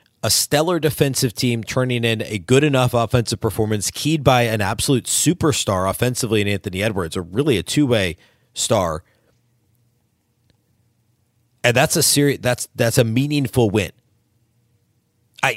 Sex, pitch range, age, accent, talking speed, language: male, 110-130 Hz, 30-49, American, 135 wpm, English